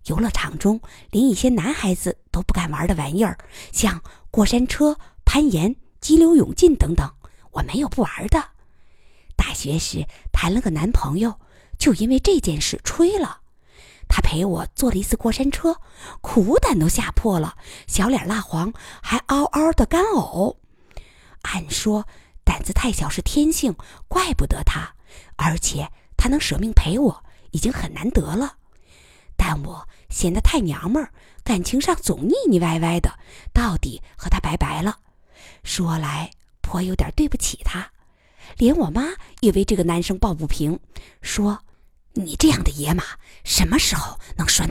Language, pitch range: Chinese, 165-275 Hz